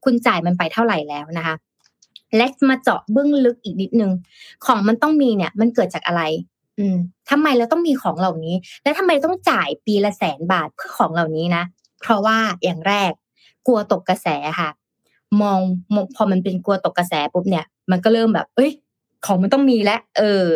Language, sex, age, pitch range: Thai, female, 20-39, 175-240 Hz